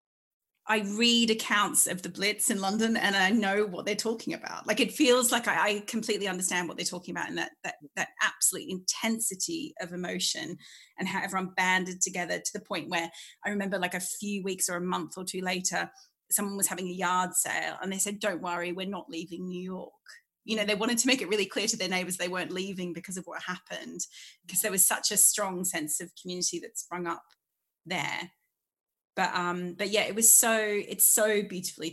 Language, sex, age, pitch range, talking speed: English, female, 30-49, 180-215 Hz, 215 wpm